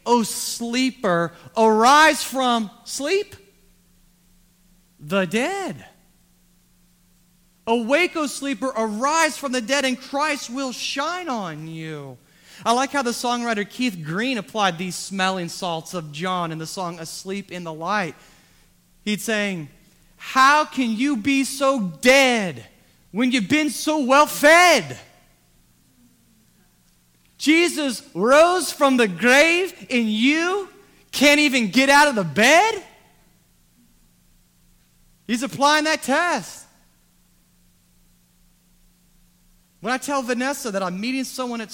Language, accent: English, American